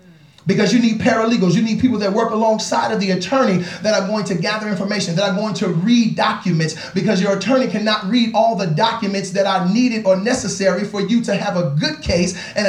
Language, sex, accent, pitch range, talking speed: English, male, American, 205-255 Hz, 220 wpm